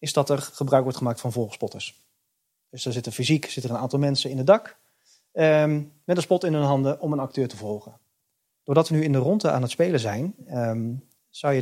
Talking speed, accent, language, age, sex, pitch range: 225 wpm, Dutch, Dutch, 30-49, male, 120-155 Hz